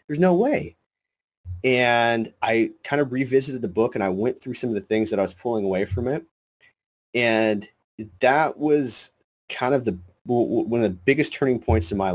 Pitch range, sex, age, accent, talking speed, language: 95-120 Hz, male, 30-49, American, 195 wpm, English